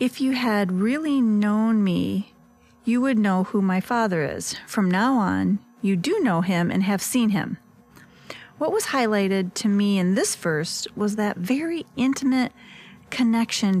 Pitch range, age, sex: 185-240 Hz, 30-49, female